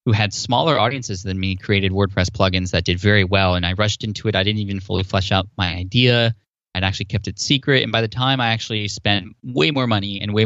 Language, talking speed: English, 245 wpm